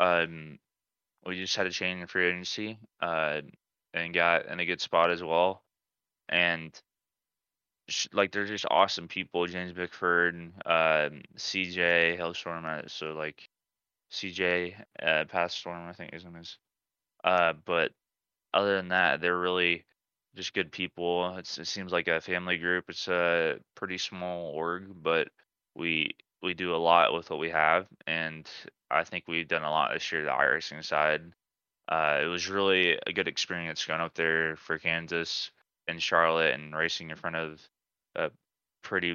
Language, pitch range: English, 80-90 Hz